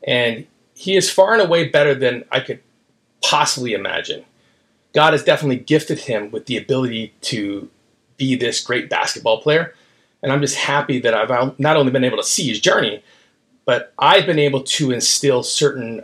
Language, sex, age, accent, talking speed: English, male, 30-49, American, 175 wpm